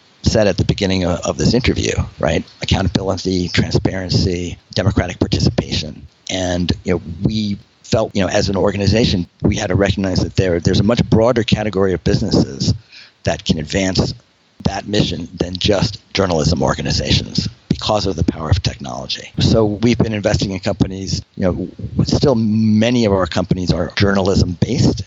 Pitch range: 90-110 Hz